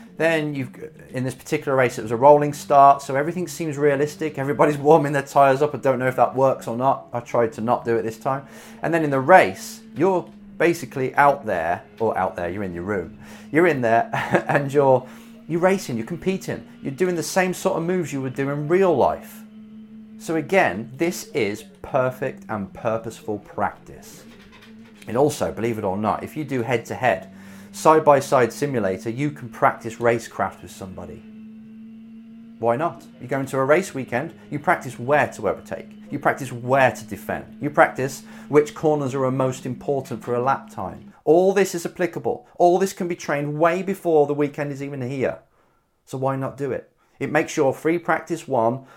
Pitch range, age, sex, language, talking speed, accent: 125-175 Hz, 30-49, male, English, 195 wpm, British